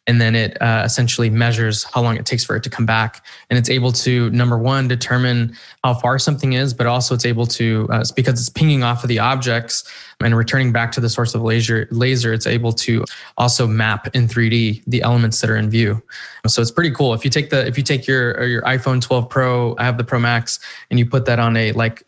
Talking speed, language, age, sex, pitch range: 245 wpm, English, 20-39, male, 115-130 Hz